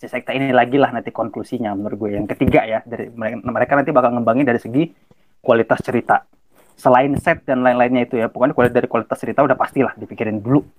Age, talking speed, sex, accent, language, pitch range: 30-49, 200 wpm, male, native, Indonesian, 125-155 Hz